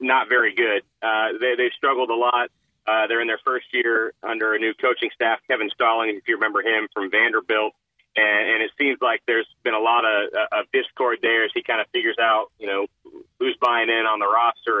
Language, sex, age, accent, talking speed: English, male, 40-59, American, 225 wpm